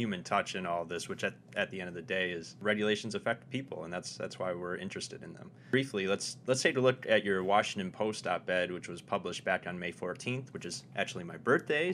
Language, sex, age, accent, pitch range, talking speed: English, male, 30-49, American, 95-130 Hz, 240 wpm